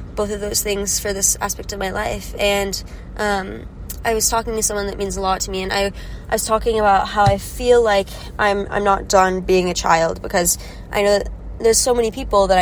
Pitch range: 185-215 Hz